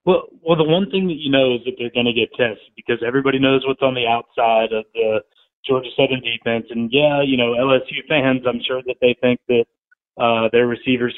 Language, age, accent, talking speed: English, 30-49, American, 225 wpm